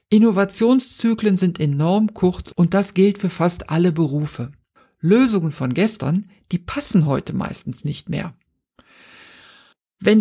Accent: German